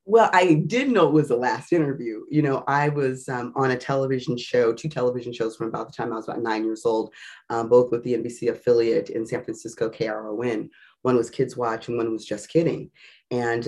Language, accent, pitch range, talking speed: English, American, 115-145 Hz, 225 wpm